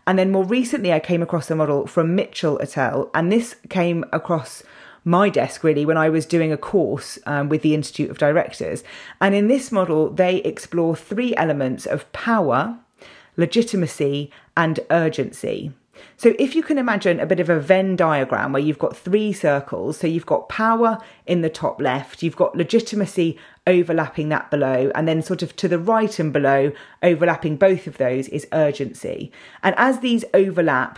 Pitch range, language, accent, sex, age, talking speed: 155-205 Hz, English, British, female, 30-49, 185 wpm